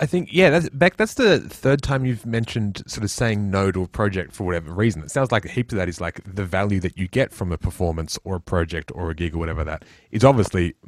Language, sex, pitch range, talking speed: English, male, 90-115 Hz, 265 wpm